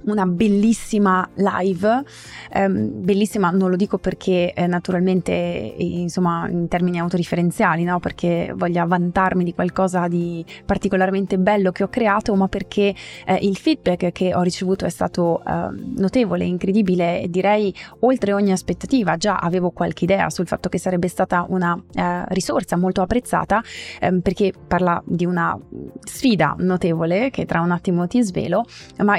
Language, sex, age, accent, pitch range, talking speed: Italian, female, 20-39, native, 180-210 Hz, 150 wpm